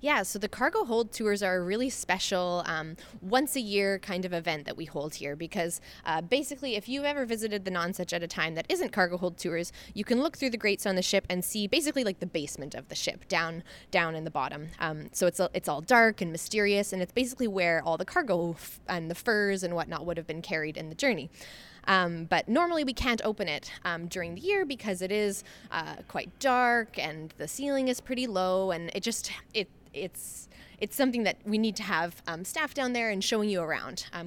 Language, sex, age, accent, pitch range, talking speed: English, female, 20-39, American, 170-220 Hz, 230 wpm